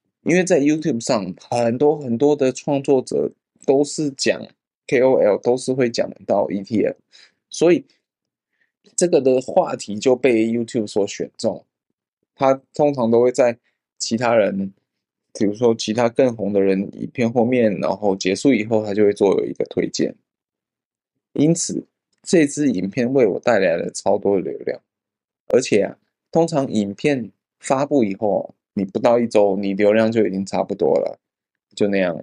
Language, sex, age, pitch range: Chinese, male, 20-39, 100-140 Hz